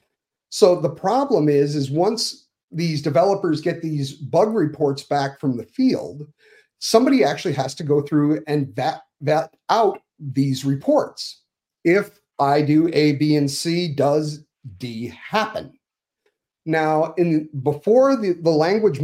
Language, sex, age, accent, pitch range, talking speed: English, male, 40-59, American, 145-175 Hz, 140 wpm